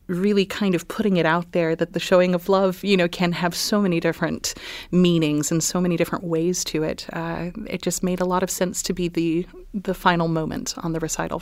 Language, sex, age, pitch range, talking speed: English, female, 30-49, 165-185 Hz, 230 wpm